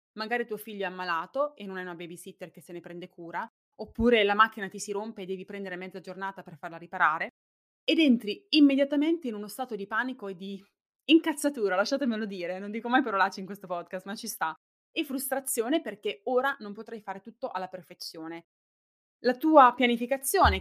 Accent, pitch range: native, 180-235 Hz